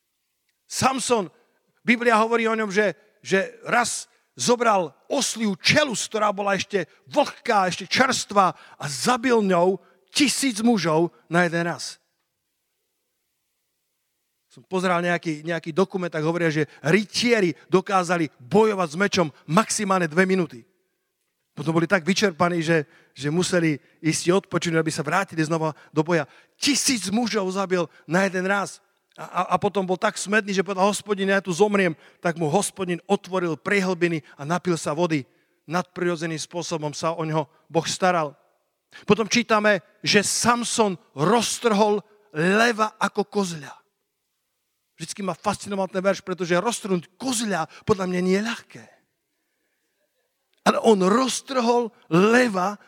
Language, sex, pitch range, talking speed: Slovak, male, 170-215 Hz, 130 wpm